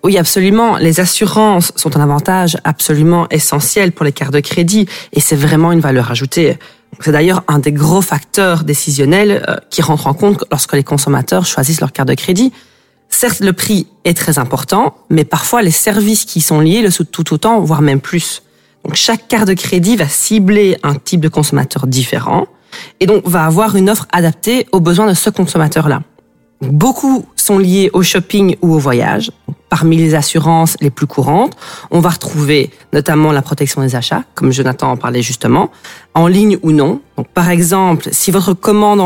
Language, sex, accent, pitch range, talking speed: French, female, French, 150-195 Hz, 185 wpm